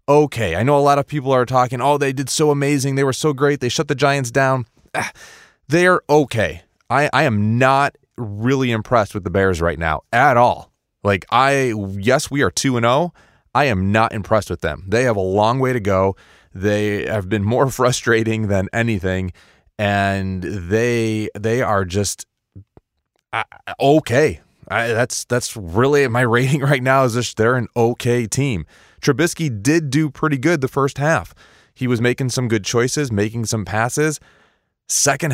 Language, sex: English, male